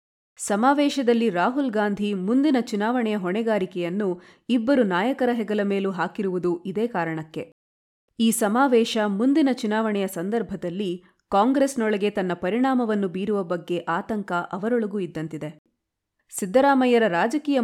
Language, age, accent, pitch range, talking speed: Kannada, 30-49, native, 180-245 Hz, 95 wpm